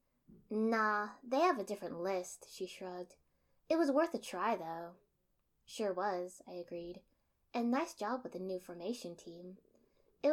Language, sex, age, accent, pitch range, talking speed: English, female, 10-29, American, 175-235 Hz, 155 wpm